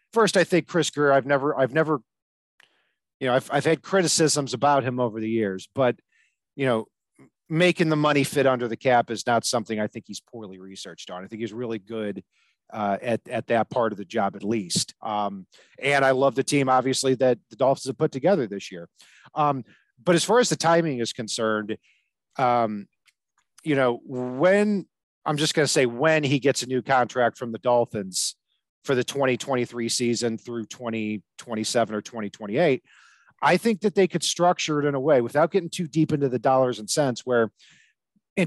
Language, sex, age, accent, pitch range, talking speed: English, male, 40-59, American, 115-150 Hz, 195 wpm